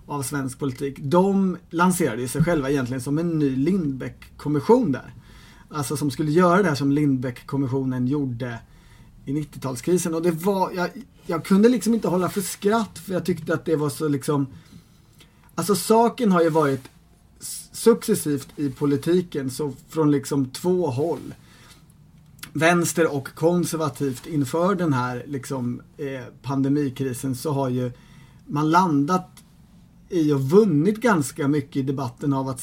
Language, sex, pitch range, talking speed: Swedish, male, 140-180 Hz, 145 wpm